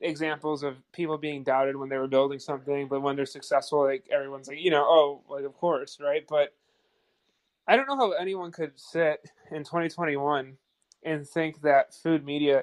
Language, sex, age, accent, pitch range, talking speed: English, male, 20-39, American, 140-170 Hz, 185 wpm